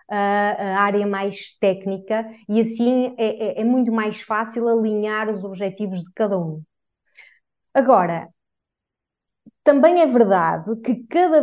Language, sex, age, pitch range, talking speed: English, female, 20-39, 205-250 Hz, 125 wpm